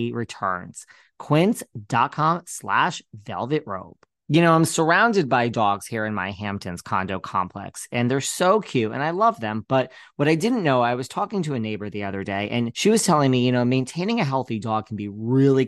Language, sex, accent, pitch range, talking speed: English, male, American, 115-140 Hz, 205 wpm